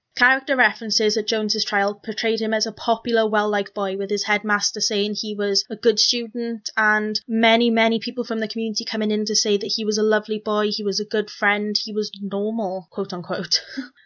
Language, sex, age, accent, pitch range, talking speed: English, female, 10-29, British, 195-220 Hz, 205 wpm